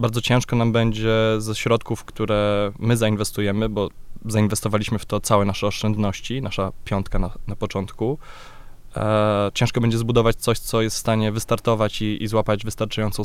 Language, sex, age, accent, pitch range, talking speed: Polish, male, 20-39, native, 100-115 Hz, 155 wpm